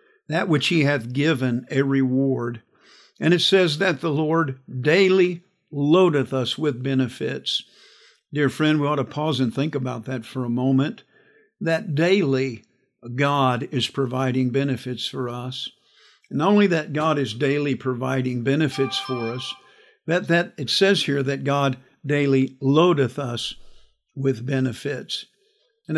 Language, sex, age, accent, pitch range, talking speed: English, male, 50-69, American, 130-155 Hz, 140 wpm